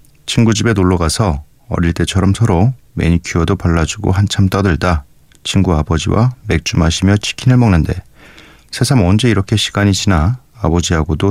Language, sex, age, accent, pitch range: Korean, male, 40-59, native, 85-120 Hz